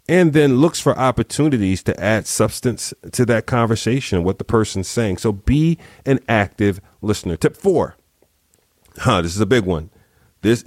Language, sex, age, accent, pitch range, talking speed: English, male, 40-59, American, 90-125 Hz, 165 wpm